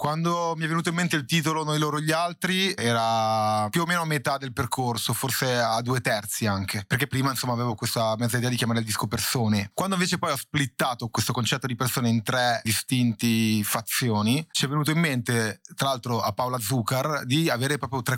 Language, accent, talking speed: Italian, native, 210 wpm